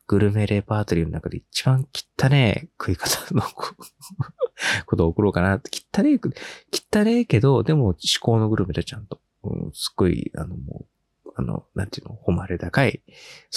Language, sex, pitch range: Japanese, male, 85-125 Hz